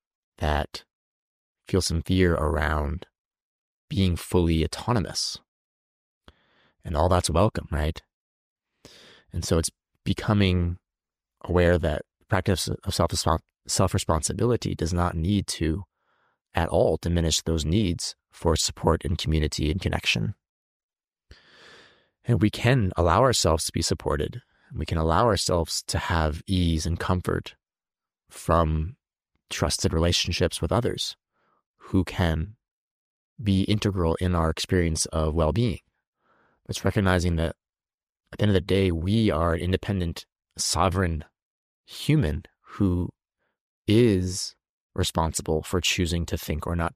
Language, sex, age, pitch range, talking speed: English, male, 30-49, 80-100 Hz, 125 wpm